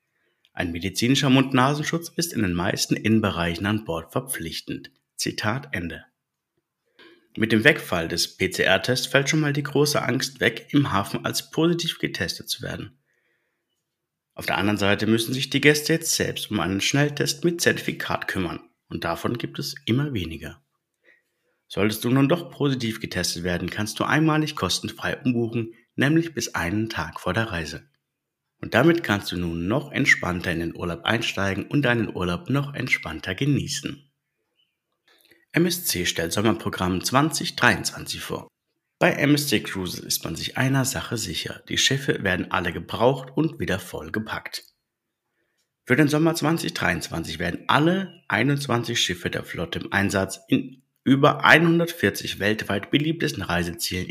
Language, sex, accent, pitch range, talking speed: German, male, German, 95-150 Hz, 145 wpm